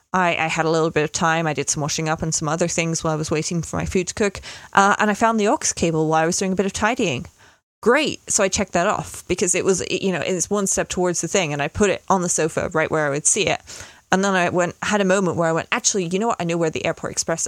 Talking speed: 310 wpm